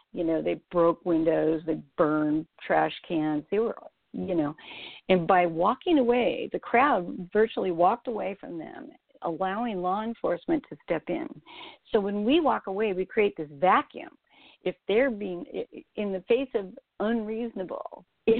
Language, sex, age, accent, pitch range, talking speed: English, female, 60-79, American, 160-225 Hz, 155 wpm